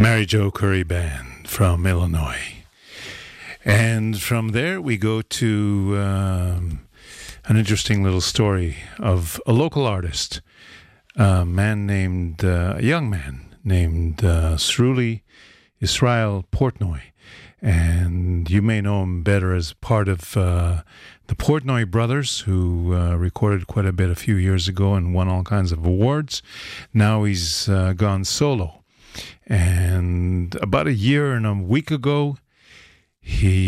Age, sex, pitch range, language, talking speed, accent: 50-69, male, 90-110 Hz, English, 135 wpm, American